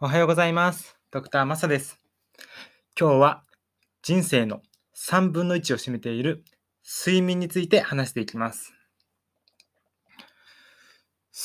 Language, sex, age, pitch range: Japanese, male, 20-39, 125-180 Hz